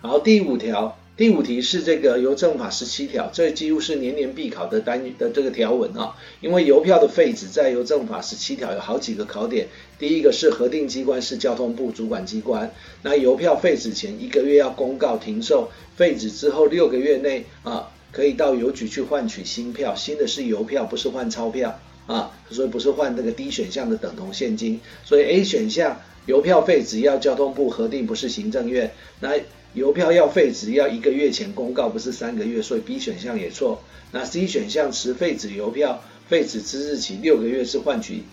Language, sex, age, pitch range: Chinese, male, 50-69, 140-235 Hz